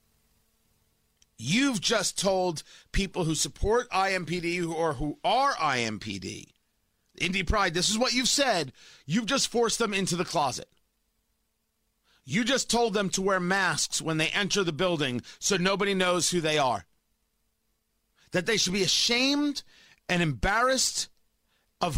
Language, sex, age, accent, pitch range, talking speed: English, male, 40-59, American, 160-215 Hz, 140 wpm